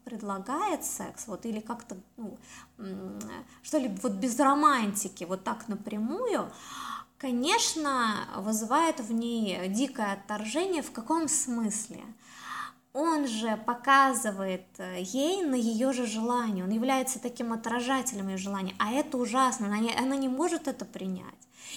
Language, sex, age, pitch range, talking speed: Russian, female, 20-39, 215-275 Hz, 125 wpm